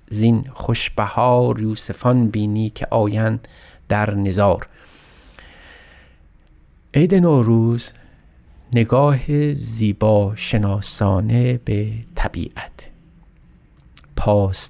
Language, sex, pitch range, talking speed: Persian, male, 100-125 Hz, 65 wpm